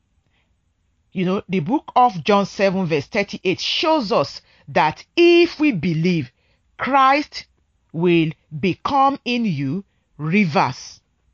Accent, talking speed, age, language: Nigerian, 110 wpm, 40-59, English